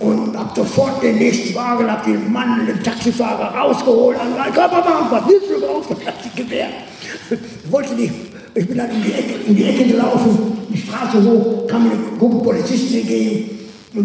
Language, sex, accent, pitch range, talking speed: German, male, German, 200-245 Hz, 165 wpm